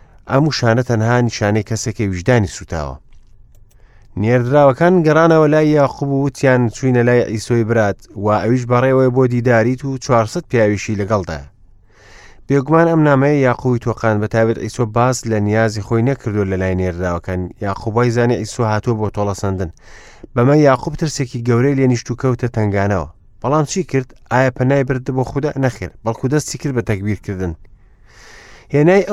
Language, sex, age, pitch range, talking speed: English, male, 30-49, 105-135 Hz, 150 wpm